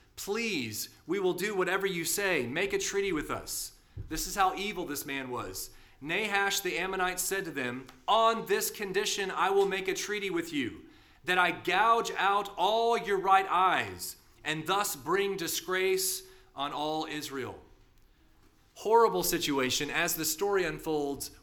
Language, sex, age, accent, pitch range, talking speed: English, male, 30-49, American, 130-190 Hz, 155 wpm